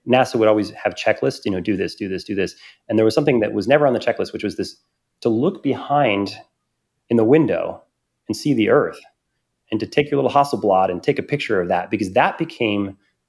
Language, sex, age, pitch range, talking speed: English, male, 30-49, 105-125 Hz, 230 wpm